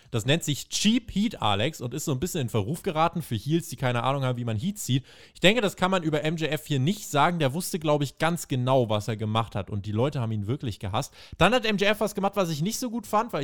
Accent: German